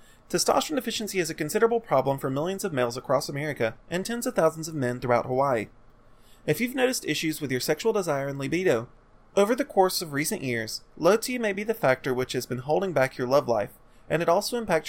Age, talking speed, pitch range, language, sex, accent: 30-49, 220 wpm, 125-185 Hz, English, male, American